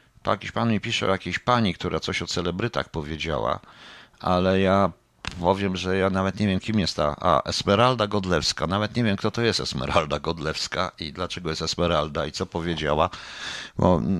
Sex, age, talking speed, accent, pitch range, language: male, 50-69, 180 wpm, native, 80-105 Hz, Polish